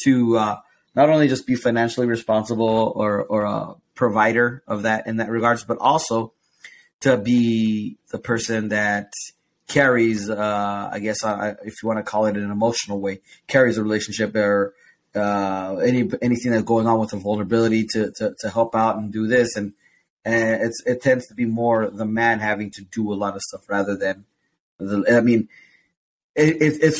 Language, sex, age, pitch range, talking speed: English, male, 30-49, 105-120 Hz, 185 wpm